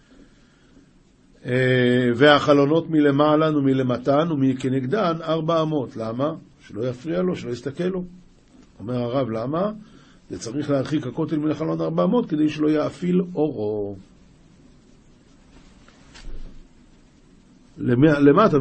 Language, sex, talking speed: Hebrew, male, 95 wpm